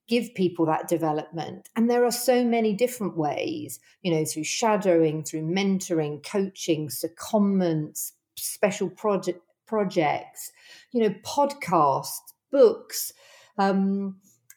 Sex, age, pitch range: female, 50-69, 175-225 Hz